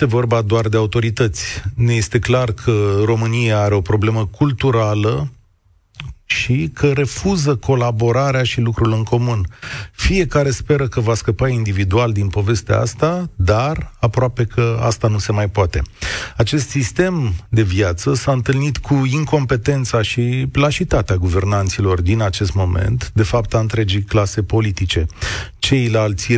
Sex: male